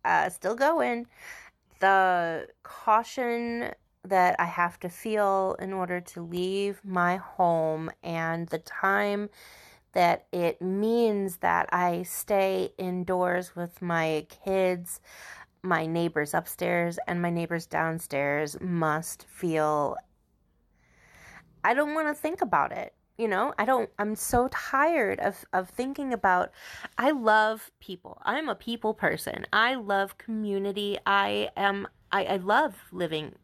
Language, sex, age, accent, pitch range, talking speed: English, female, 30-49, American, 175-210 Hz, 130 wpm